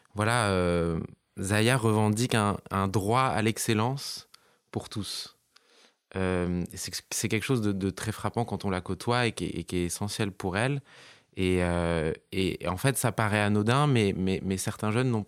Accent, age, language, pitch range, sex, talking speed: French, 20-39, French, 95-120 Hz, male, 175 wpm